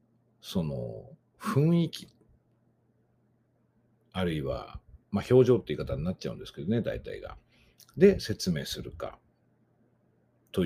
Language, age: Japanese, 60-79